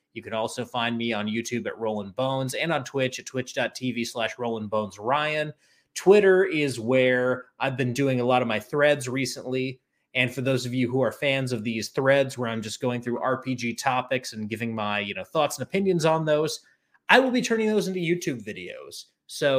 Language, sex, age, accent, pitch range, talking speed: English, male, 30-49, American, 120-140 Hz, 210 wpm